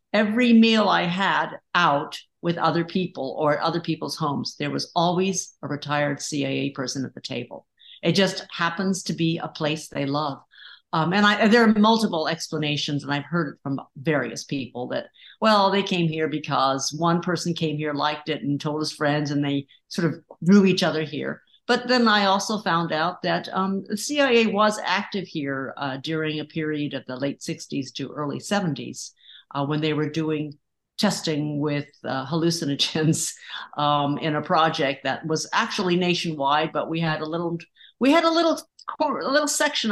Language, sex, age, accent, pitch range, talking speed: English, female, 50-69, American, 150-210 Hz, 185 wpm